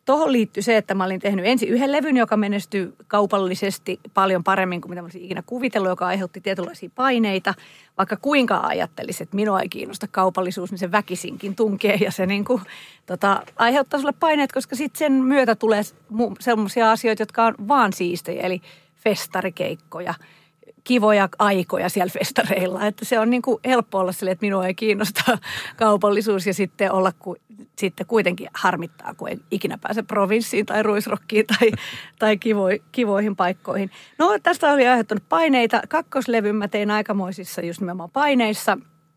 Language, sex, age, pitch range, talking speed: Finnish, female, 40-59, 185-230 Hz, 160 wpm